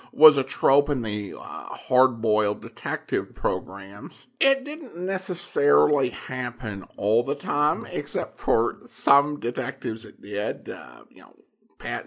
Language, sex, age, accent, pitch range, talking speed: English, male, 50-69, American, 115-160 Hz, 130 wpm